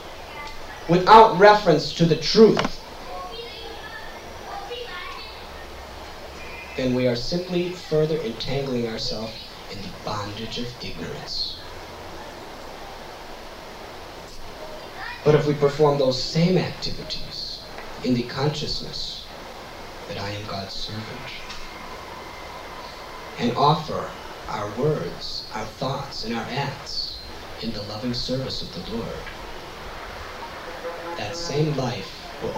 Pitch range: 115-170 Hz